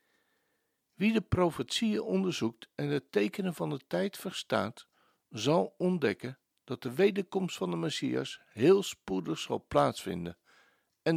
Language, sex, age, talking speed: Dutch, male, 60-79, 130 wpm